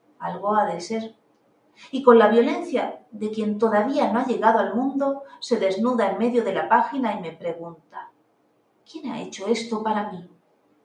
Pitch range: 195-250 Hz